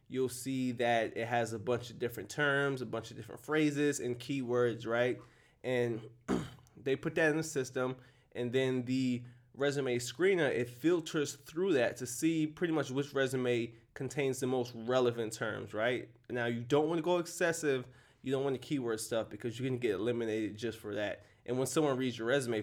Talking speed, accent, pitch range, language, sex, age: 190 wpm, American, 115-135 Hz, English, male, 20-39